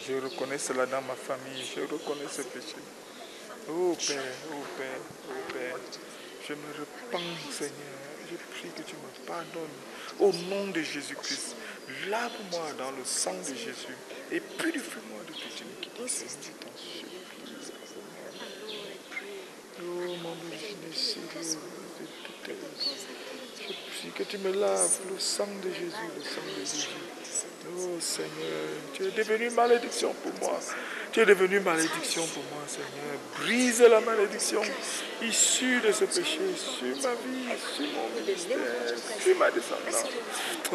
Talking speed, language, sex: 140 wpm, English, male